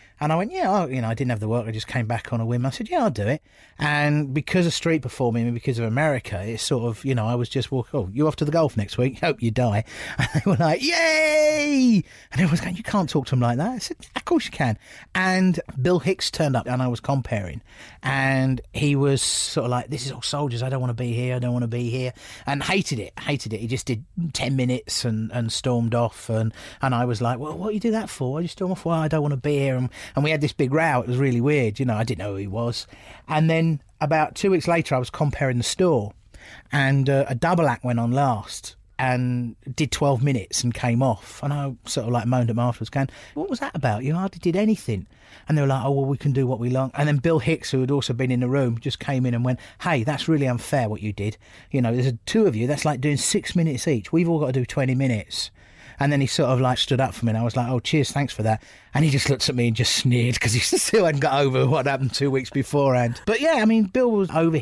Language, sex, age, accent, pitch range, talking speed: English, male, 30-49, British, 120-150 Hz, 285 wpm